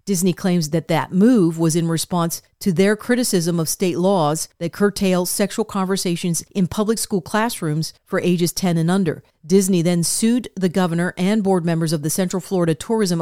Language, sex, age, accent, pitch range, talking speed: English, female, 40-59, American, 170-200 Hz, 180 wpm